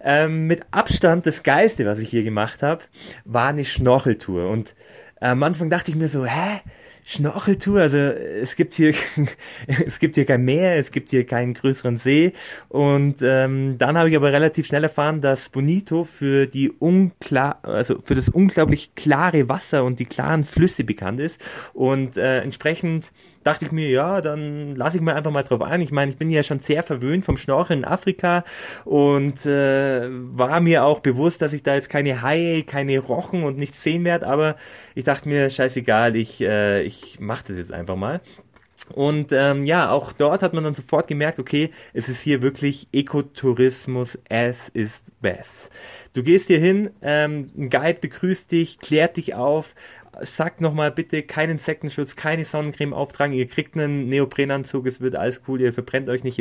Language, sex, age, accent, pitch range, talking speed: German, male, 20-39, German, 130-160 Hz, 185 wpm